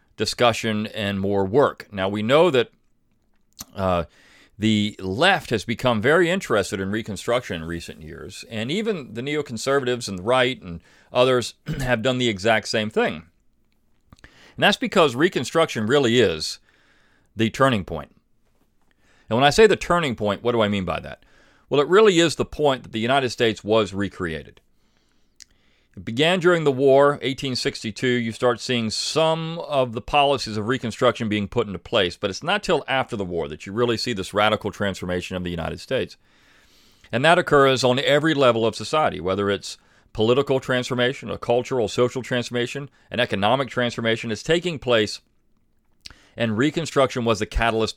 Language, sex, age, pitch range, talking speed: English, male, 40-59, 105-130 Hz, 165 wpm